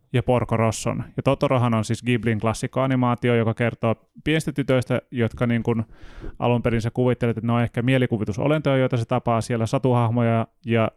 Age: 30-49